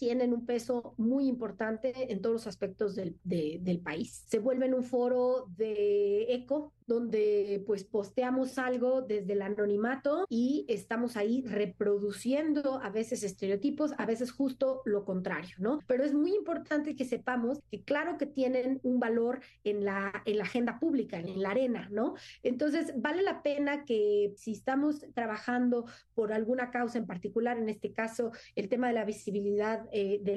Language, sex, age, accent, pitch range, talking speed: Spanish, female, 30-49, Mexican, 210-260 Hz, 165 wpm